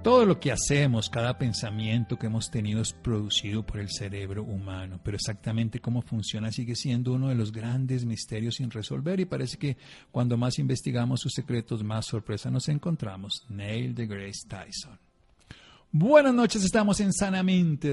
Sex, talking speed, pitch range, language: male, 165 wpm, 110-140 Hz, Spanish